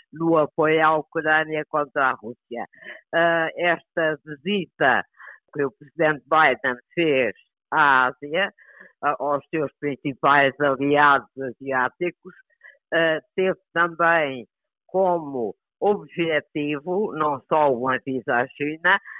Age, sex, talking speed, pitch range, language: 50-69, female, 105 wpm, 140-170 Hz, Portuguese